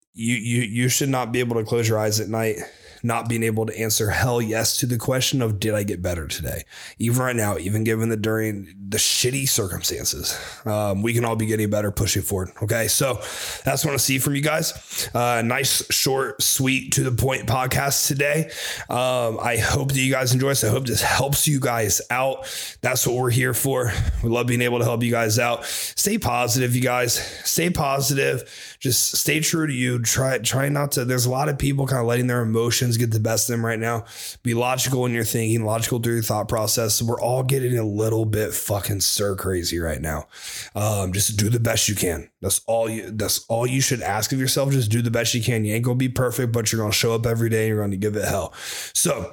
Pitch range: 110-130 Hz